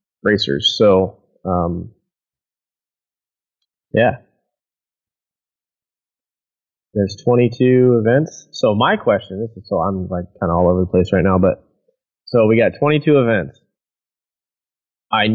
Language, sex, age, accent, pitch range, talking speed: English, male, 30-49, American, 95-115 Hz, 115 wpm